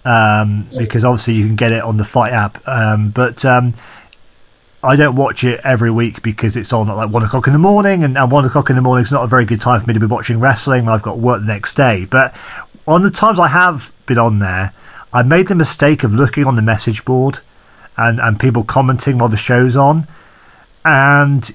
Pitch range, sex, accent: 110-135 Hz, male, British